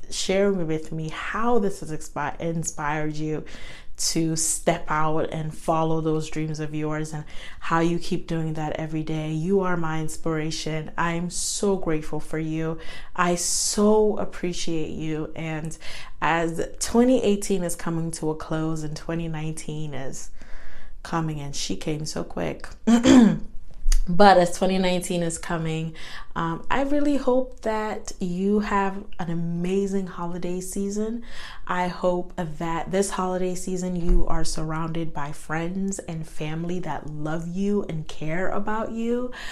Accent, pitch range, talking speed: American, 160-185 Hz, 140 wpm